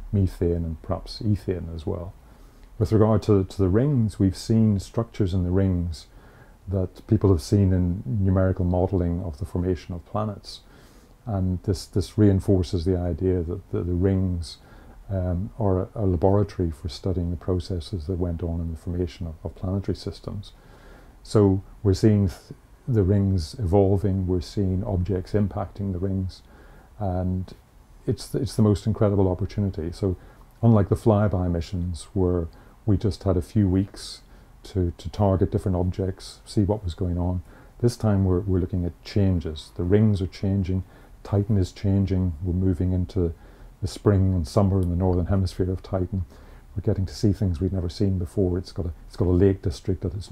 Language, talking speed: English, 175 wpm